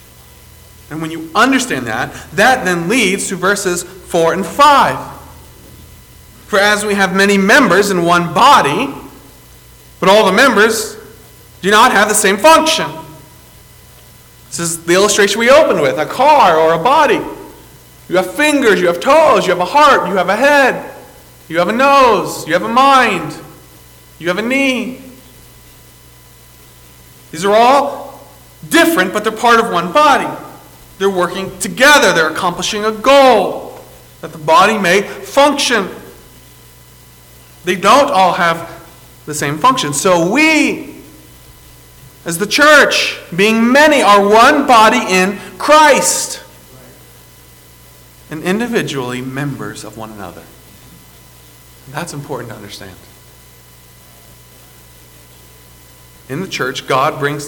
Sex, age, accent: male, 40-59, American